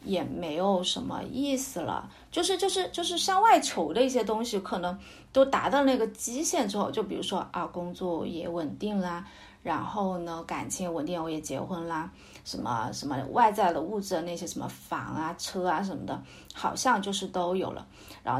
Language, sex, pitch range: Chinese, female, 170-250 Hz